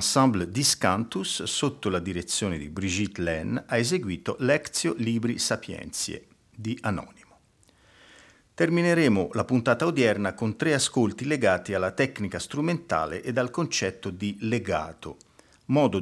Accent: native